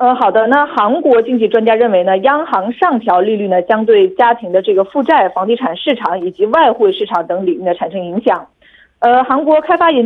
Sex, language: female, Korean